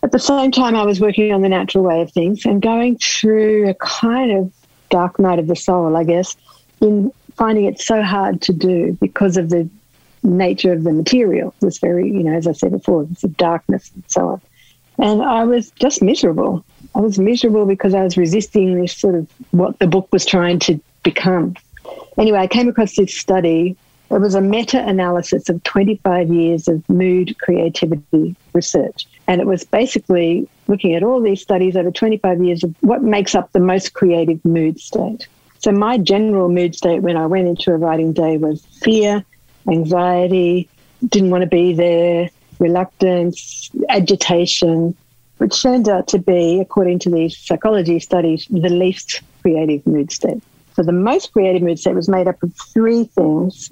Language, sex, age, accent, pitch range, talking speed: English, female, 60-79, Australian, 170-205 Hz, 185 wpm